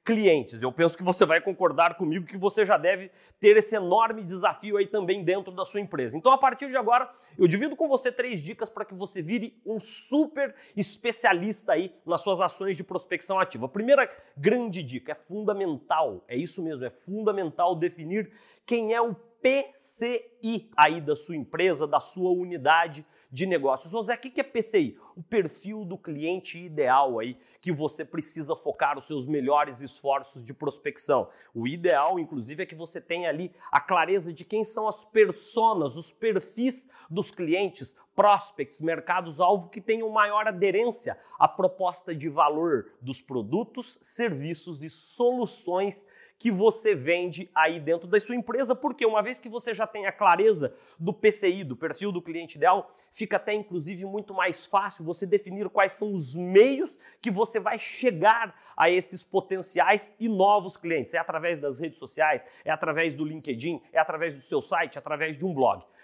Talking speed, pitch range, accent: 175 wpm, 165-225 Hz, Brazilian